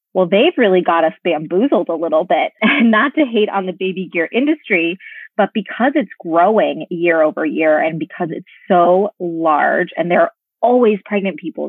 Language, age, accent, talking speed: English, 20-39, American, 175 wpm